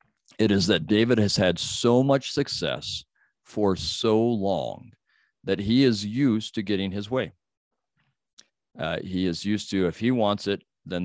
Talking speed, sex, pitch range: 165 wpm, male, 95-115 Hz